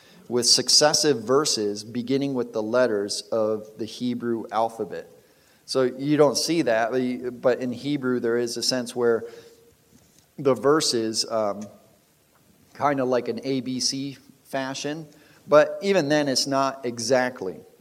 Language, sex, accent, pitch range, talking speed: English, male, American, 110-135 Hz, 130 wpm